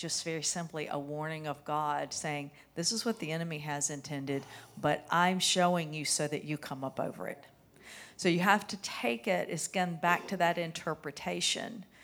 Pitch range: 155-205 Hz